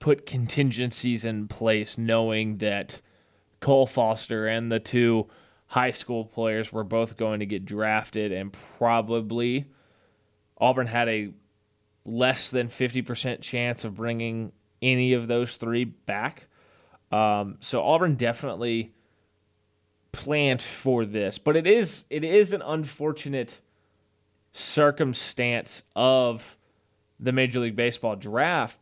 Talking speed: 115 wpm